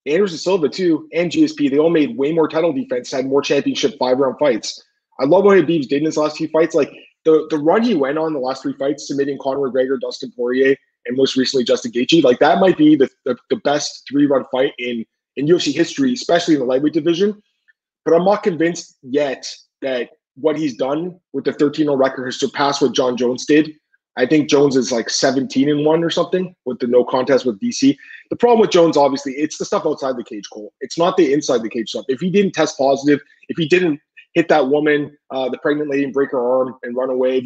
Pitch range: 135-180 Hz